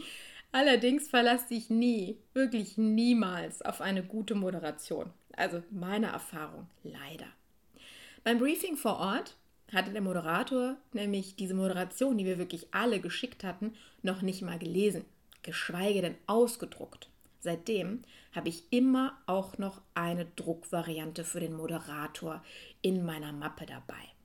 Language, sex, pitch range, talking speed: German, female, 185-250 Hz, 130 wpm